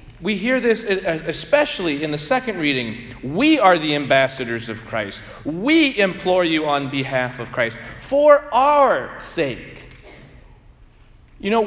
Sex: male